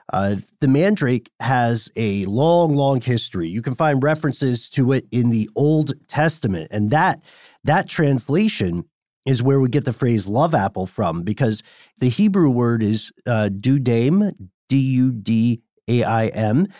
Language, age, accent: English, 40-59, American